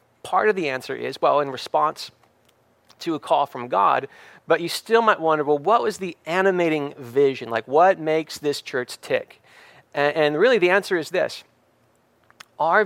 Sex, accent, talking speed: male, American, 175 wpm